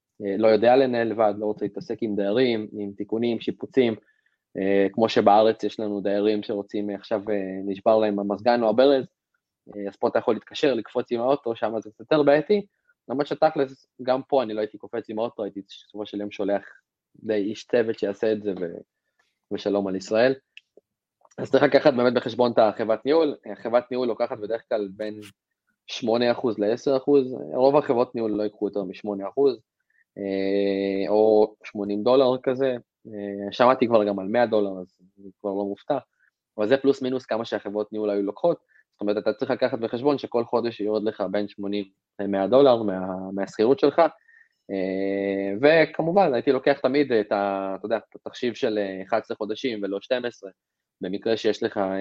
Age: 20-39